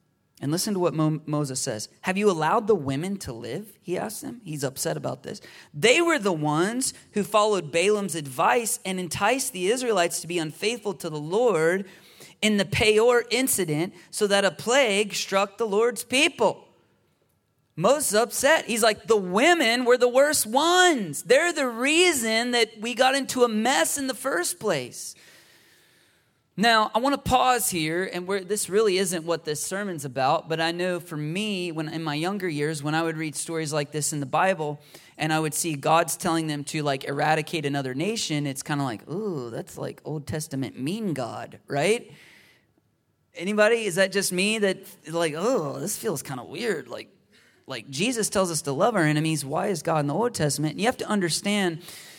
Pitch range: 155-220 Hz